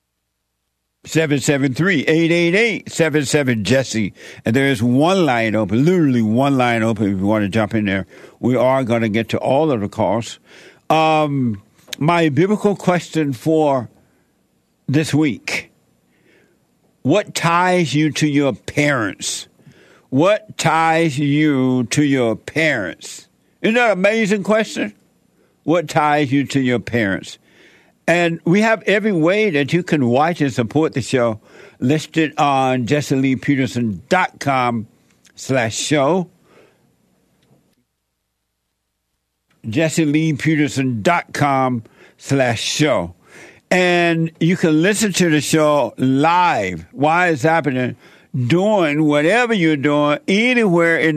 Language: English